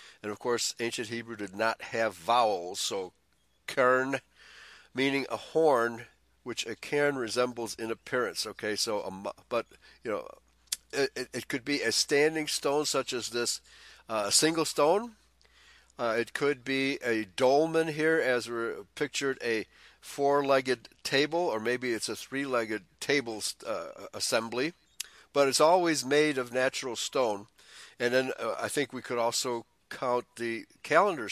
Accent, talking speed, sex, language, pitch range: American, 150 wpm, male, English, 110-135 Hz